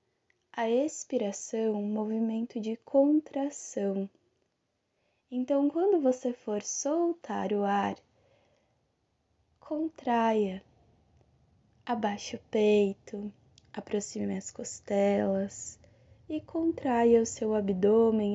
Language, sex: Portuguese, female